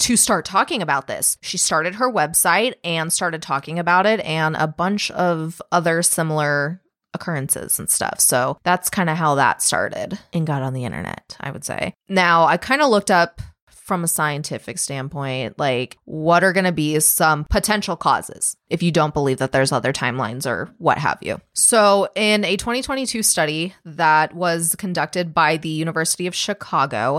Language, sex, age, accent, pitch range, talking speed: English, female, 20-39, American, 155-190 Hz, 180 wpm